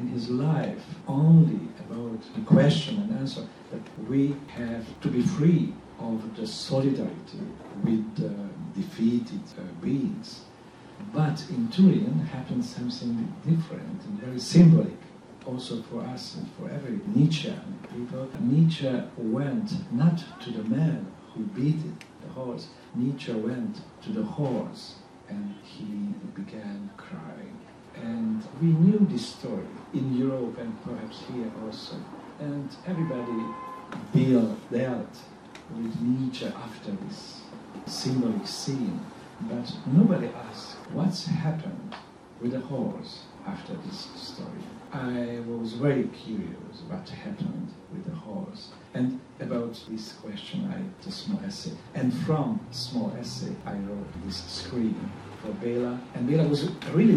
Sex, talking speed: male, 130 wpm